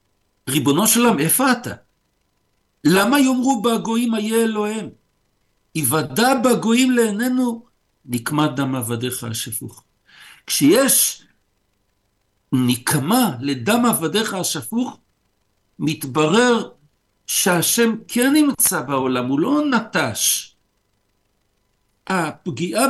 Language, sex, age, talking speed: Hebrew, male, 60-79, 80 wpm